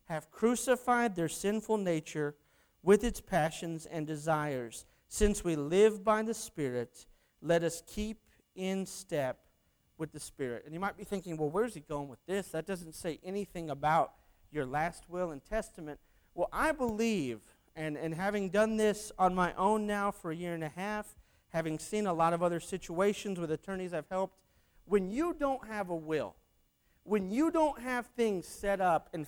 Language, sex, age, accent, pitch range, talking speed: English, male, 40-59, American, 150-200 Hz, 180 wpm